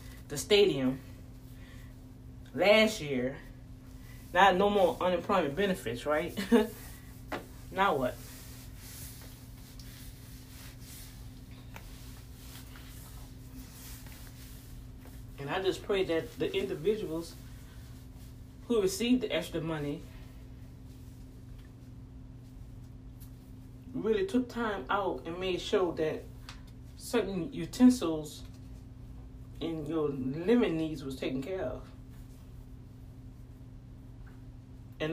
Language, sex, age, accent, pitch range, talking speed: English, female, 20-39, American, 125-170 Hz, 75 wpm